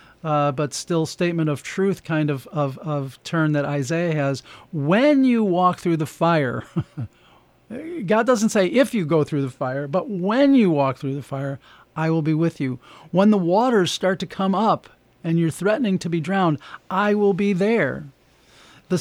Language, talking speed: English, 185 wpm